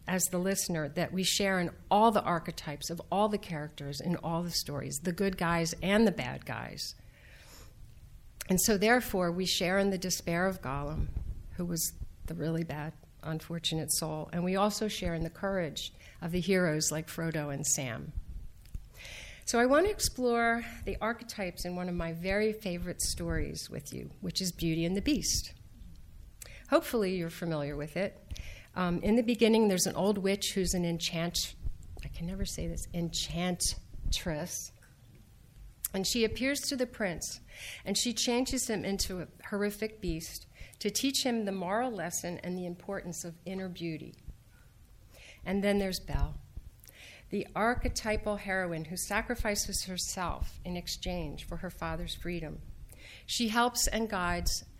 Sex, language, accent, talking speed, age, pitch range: female, English, American, 160 wpm, 50-69, 145-200 Hz